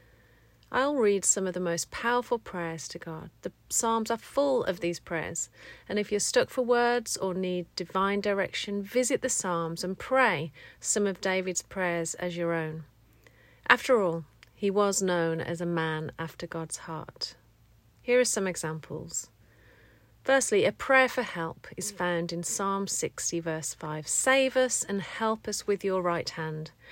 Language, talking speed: English, 165 wpm